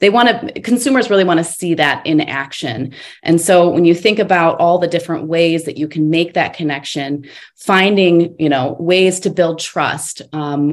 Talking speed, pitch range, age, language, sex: 195 wpm, 150-175 Hz, 20-39, English, female